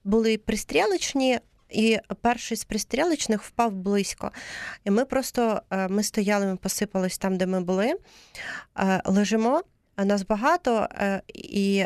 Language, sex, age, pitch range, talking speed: Ukrainian, female, 30-49, 185-225 Hz, 115 wpm